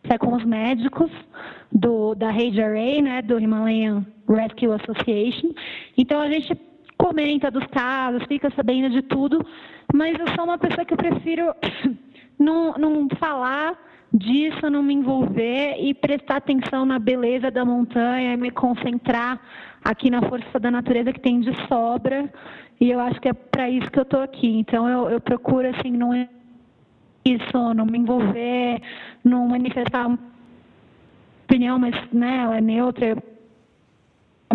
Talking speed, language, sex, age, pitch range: 145 wpm, Portuguese, female, 20-39, 235-275 Hz